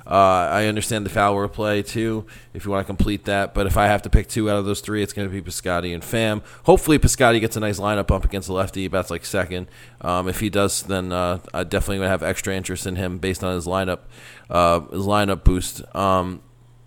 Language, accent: English, American